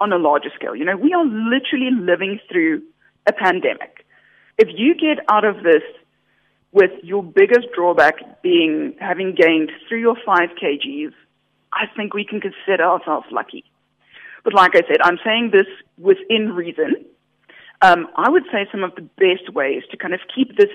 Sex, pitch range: female, 195-315 Hz